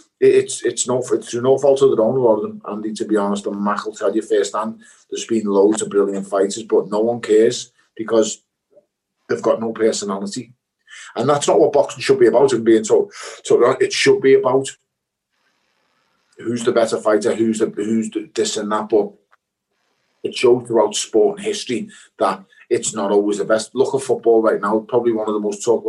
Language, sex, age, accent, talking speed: English, male, 30-49, British, 190 wpm